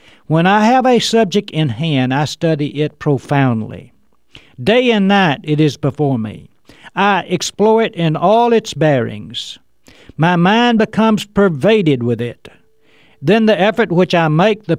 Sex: male